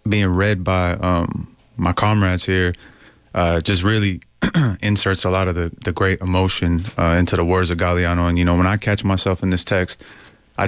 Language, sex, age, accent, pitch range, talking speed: English, male, 30-49, American, 85-100 Hz, 195 wpm